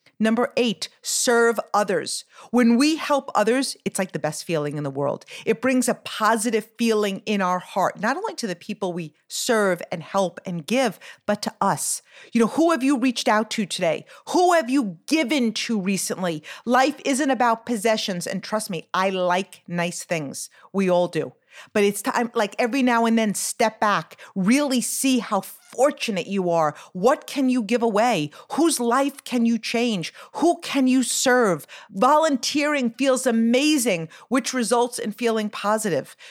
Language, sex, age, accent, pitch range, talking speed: English, female, 50-69, American, 210-270 Hz, 175 wpm